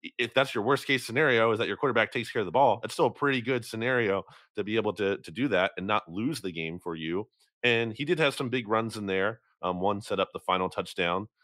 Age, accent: 30-49, American